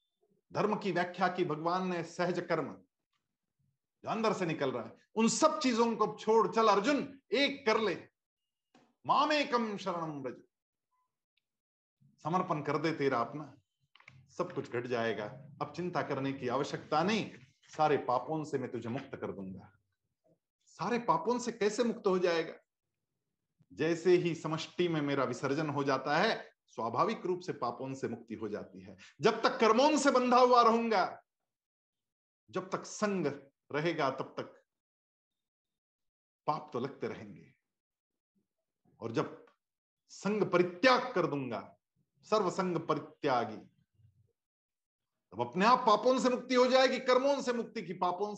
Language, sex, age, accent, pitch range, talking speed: Hindi, male, 50-69, native, 140-220 Hz, 135 wpm